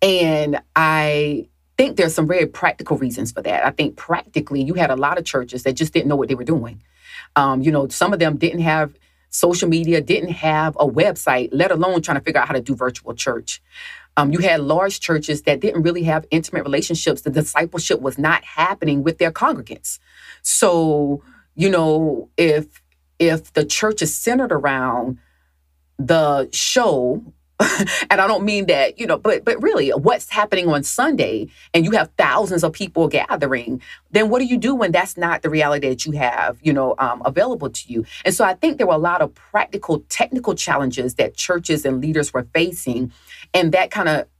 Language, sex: English, female